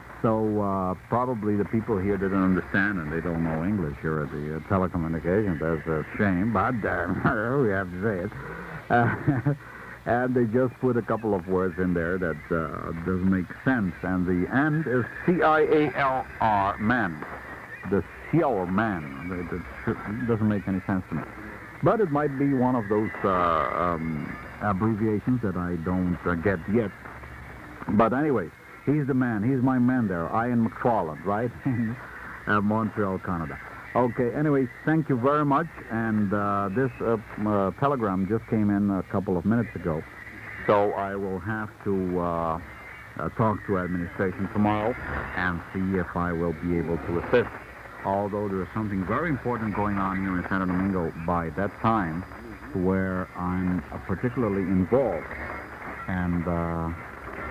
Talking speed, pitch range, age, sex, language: 160 wpm, 90-115 Hz, 60-79, male, Italian